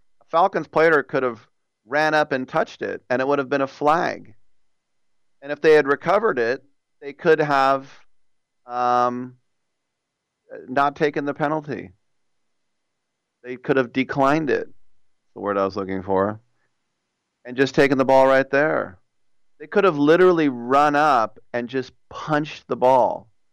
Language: English